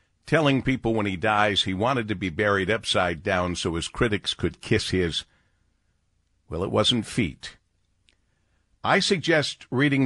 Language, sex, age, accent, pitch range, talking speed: English, male, 50-69, American, 85-125 Hz, 150 wpm